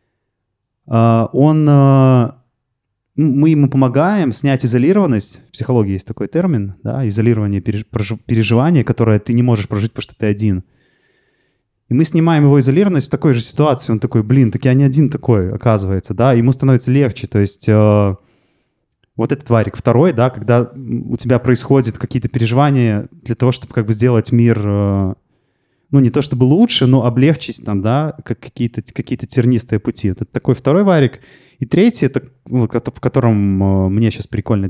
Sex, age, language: male, 20-39, Russian